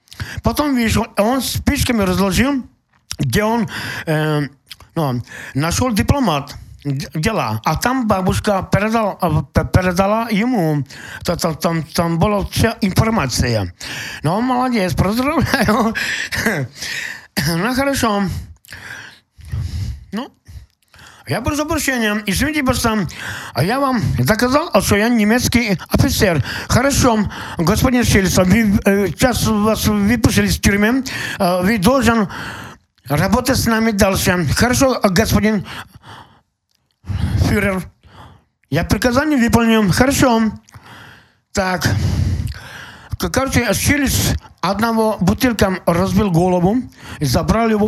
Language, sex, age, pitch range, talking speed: Ukrainian, male, 50-69, 155-230 Hz, 90 wpm